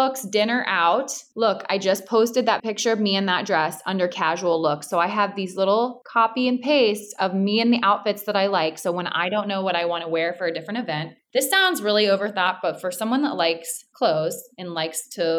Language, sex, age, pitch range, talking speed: English, female, 20-39, 170-220 Hz, 230 wpm